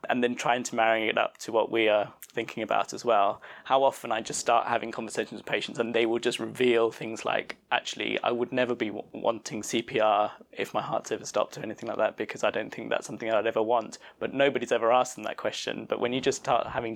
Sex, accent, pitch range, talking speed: male, British, 115-130 Hz, 250 wpm